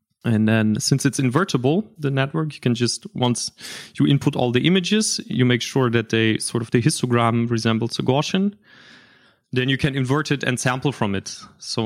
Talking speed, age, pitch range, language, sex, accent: 190 wpm, 30-49, 115-140 Hz, English, male, German